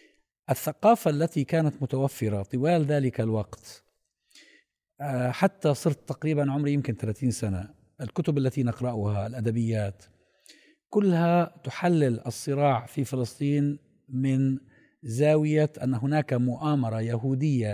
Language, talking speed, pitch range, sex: Arabic, 100 wpm, 125-165 Hz, male